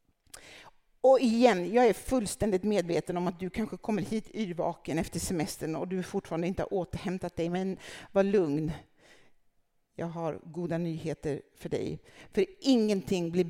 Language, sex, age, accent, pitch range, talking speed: Swedish, female, 60-79, native, 175-235 Hz, 150 wpm